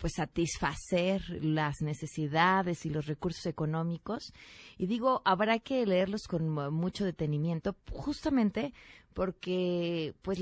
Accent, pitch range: Mexican, 150-190 Hz